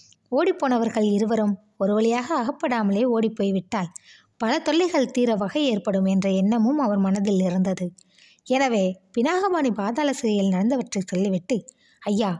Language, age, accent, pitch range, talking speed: Tamil, 20-39, native, 195-250 Hz, 115 wpm